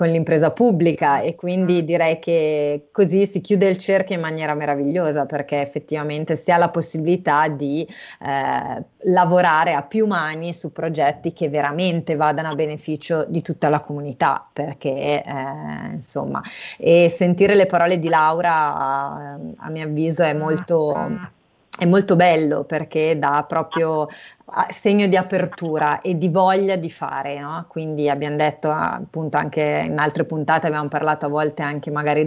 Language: Italian